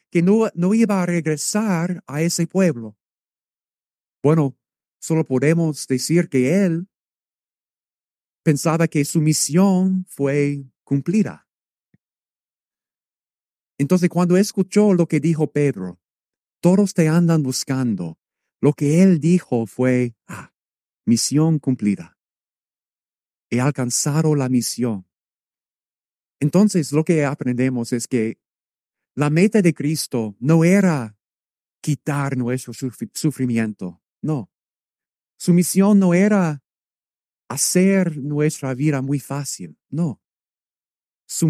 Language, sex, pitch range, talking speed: English, male, 125-170 Hz, 105 wpm